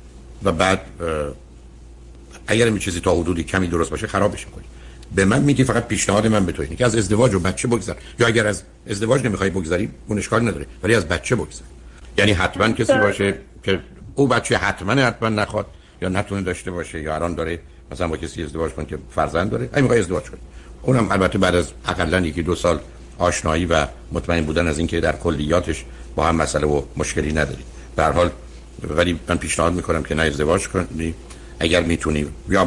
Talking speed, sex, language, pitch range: 190 wpm, male, Persian, 75-95 Hz